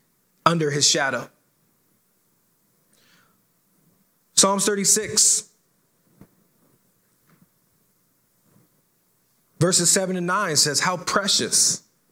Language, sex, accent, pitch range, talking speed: English, male, American, 155-190 Hz, 60 wpm